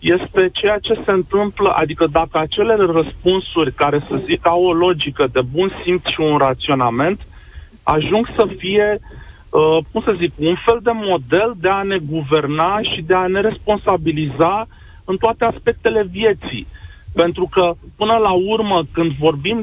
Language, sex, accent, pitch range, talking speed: Romanian, male, native, 165-205 Hz, 155 wpm